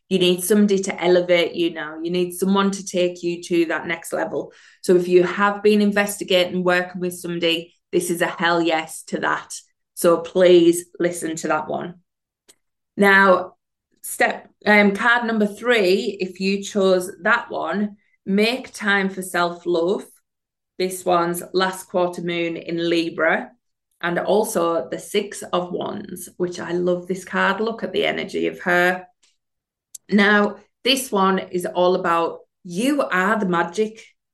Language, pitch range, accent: English, 175-200 Hz, British